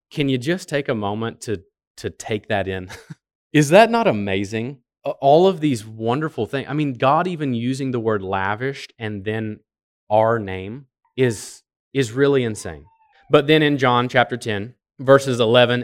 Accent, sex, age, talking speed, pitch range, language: American, male, 30-49, 165 wpm, 115-145 Hz, English